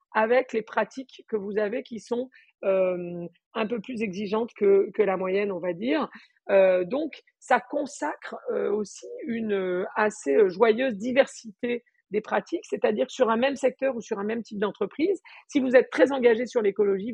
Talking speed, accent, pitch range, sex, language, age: 175 wpm, French, 205-260 Hz, female, French, 40-59